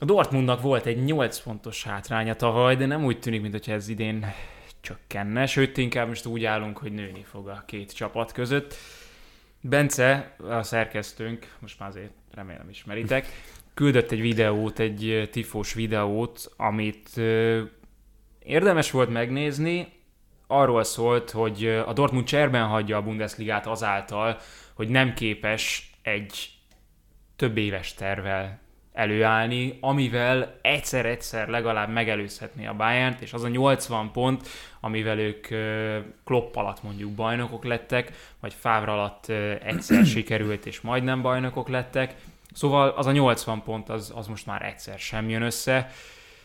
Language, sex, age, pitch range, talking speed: Hungarian, male, 20-39, 105-125 Hz, 135 wpm